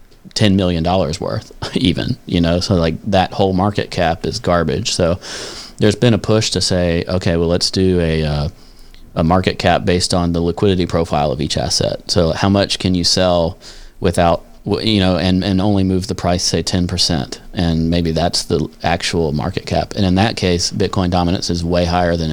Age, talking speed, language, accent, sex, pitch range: 30-49, 200 wpm, English, American, male, 85-100 Hz